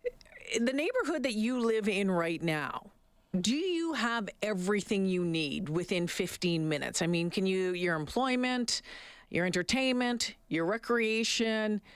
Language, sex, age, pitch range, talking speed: English, female, 50-69, 185-255 Hz, 135 wpm